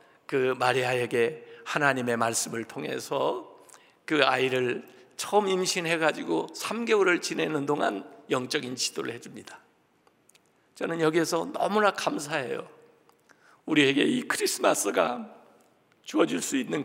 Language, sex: Korean, male